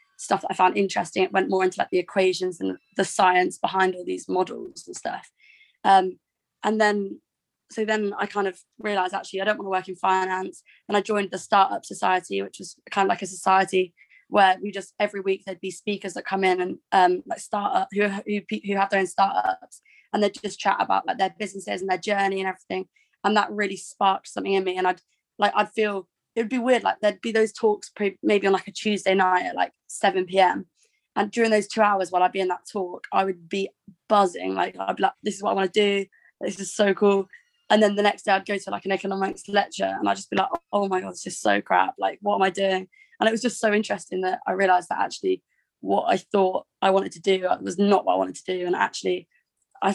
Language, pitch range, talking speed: English, 185-205 Hz, 245 wpm